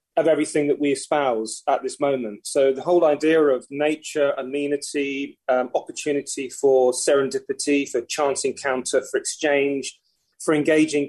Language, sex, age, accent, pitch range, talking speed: English, male, 30-49, British, 140-175 Hz, 140 wpm